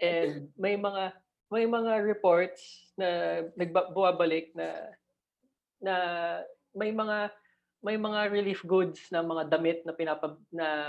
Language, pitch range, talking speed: English, 155-200 Hz, 120 wpm